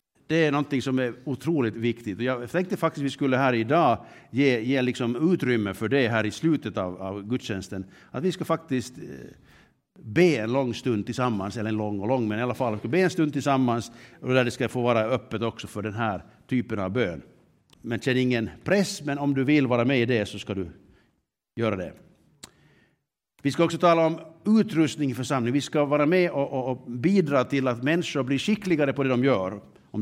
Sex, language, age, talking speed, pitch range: male, Swedish, 60-79, 215 wpm, 120-150 Hz